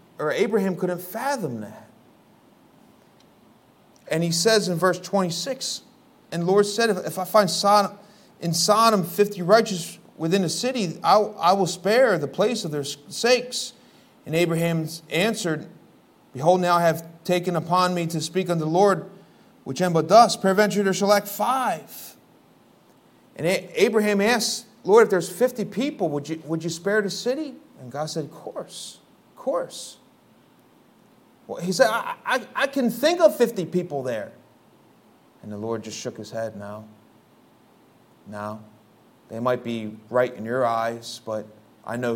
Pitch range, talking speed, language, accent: 130-210 Hz, 160 wpm, English, American